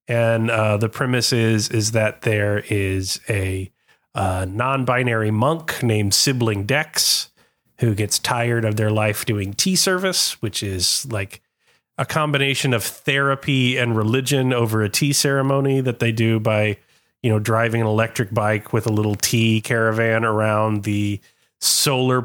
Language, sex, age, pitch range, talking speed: English, male, 30-49, 105-125 Hz, 150 wpm